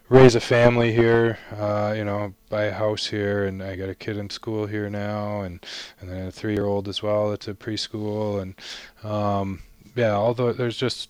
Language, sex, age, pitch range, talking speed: English, male, 20-39, 95-110 Hz, 195 wpm